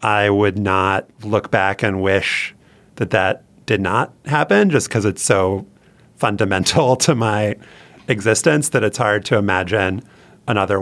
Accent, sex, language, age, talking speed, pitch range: American, male, English, 30-49, 145 wpm, 100-125 Hz